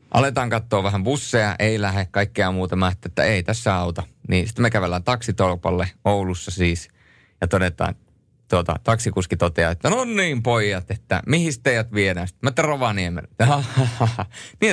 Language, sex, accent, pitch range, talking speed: Finnish, male, native, 95-130 Hz, 150 wpm